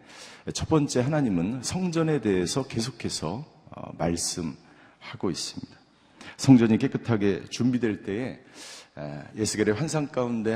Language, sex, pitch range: Korean, male, 105-135 Hz